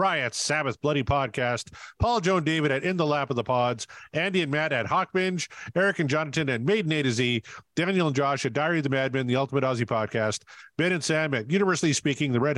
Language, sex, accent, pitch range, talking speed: English, male, American, 130-160 Hz, 235 wpm